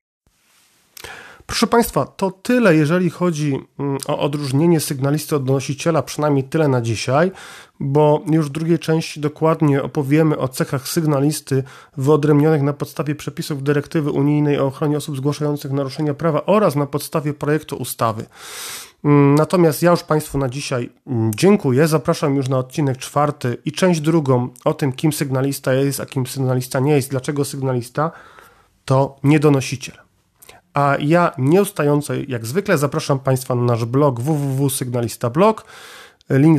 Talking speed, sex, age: 140 wpm, male, 40-59